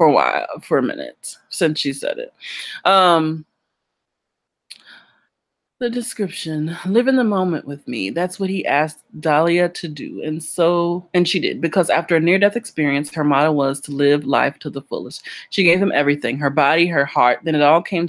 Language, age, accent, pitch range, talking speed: English, 20-39, American, 145-185 Hz, 190 wpm